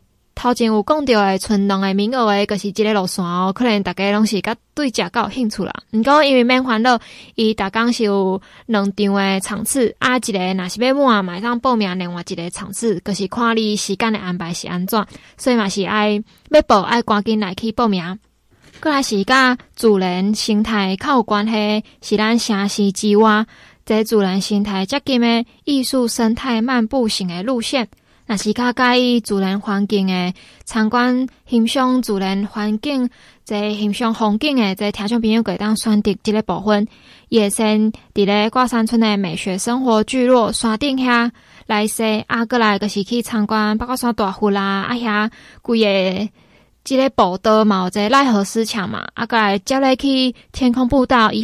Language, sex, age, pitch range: Chinese, female, 20-39, 205-240 Hz